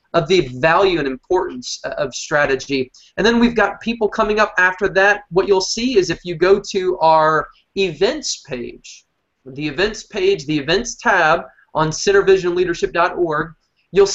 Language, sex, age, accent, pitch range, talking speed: English, male, 20-39, American, 150-205 Hz, 155 wpm